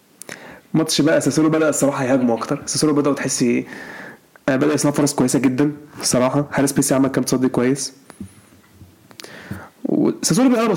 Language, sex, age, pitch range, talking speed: Arabic, male, 20-39, 130-150 Hz, 135 wpm